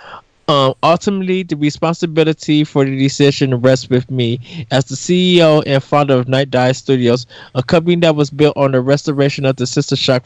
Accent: American